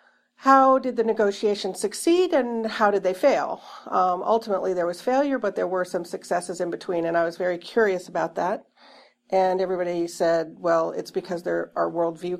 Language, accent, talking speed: English, American, 185 wpm